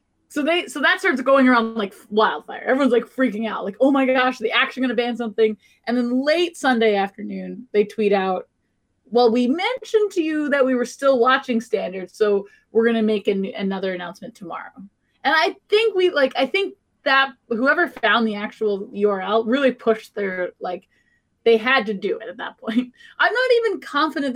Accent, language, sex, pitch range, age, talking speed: American, English, female, 215-275 Hz, 20-39, 195 wpm